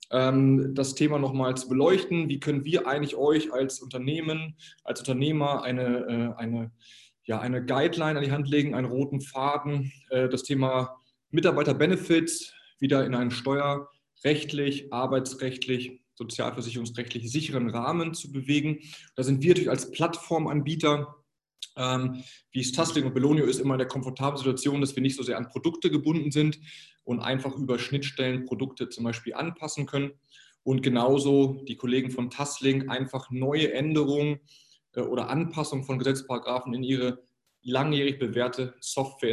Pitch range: 125-150 Hz